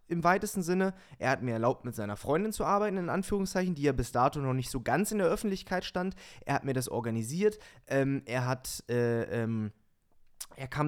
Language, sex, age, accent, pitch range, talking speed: German, male, 20-39, German, 130-180 Hz, 210 wpm